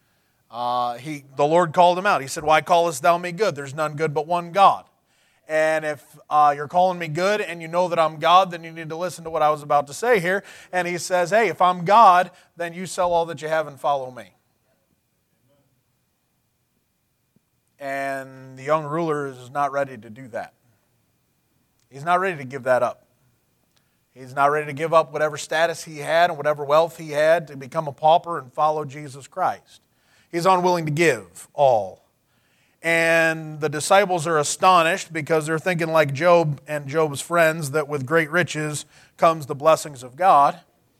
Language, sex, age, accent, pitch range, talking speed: English, male, 30-49, American, 140-170 Hz, 190 wpm